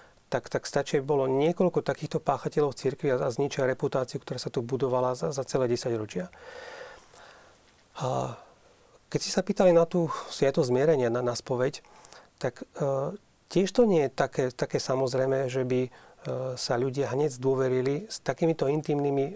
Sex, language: male, Slovak